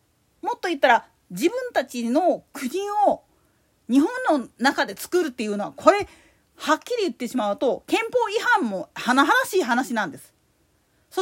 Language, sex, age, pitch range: Japanese, female, 40-59, 260-360 Hz